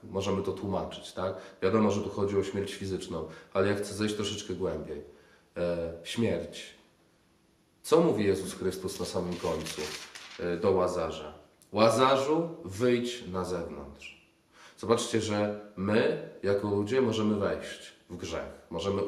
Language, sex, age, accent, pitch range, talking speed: Polish, male, 30-49, native, 90-130 Hz, 130 wpm